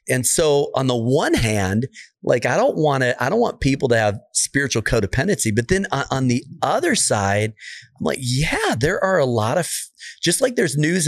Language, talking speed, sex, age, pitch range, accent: English, 200 wpm, male, 40-59, 110-145 Hz, American